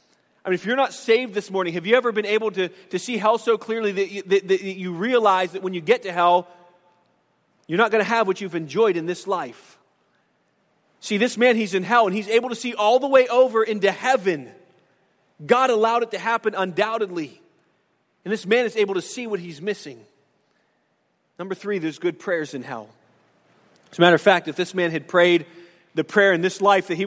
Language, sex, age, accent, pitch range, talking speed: English, male, 30-49, American, 175-220 Hz, 215 wpm